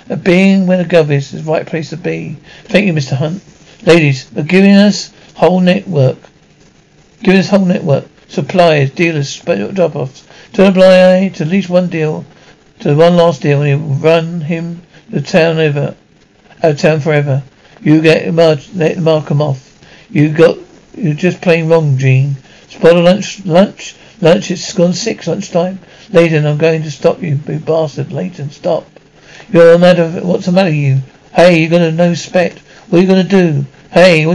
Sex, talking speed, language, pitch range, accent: male, 185 wpm, English, 150-180 Hz, British